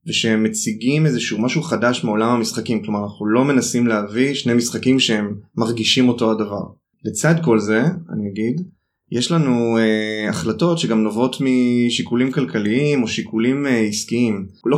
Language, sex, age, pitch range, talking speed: Hebrew, male, 20-39, 110-140 Hz, 145 wpm